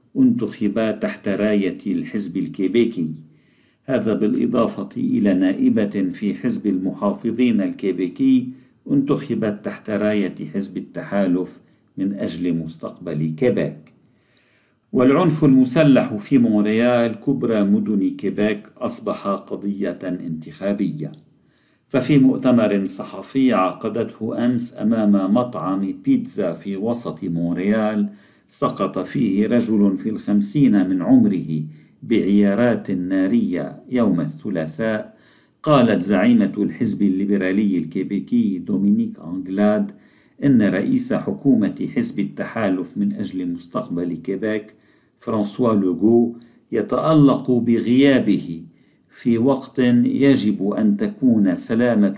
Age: 50-69